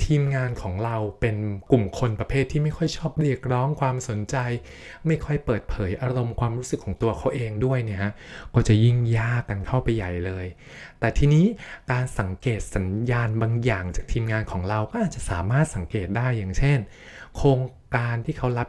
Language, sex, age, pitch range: Thai, male, 20-39, 105-135 Hz